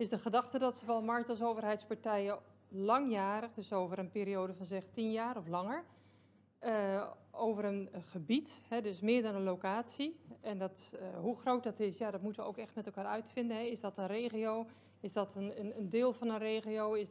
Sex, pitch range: female, 200-230 Hz